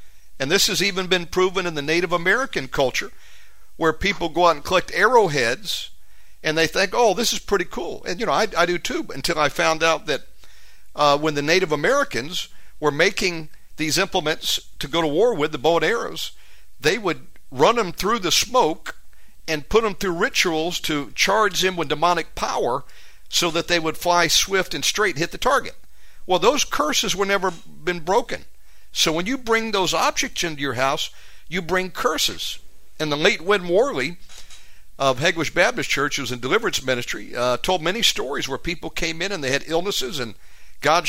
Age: 50-69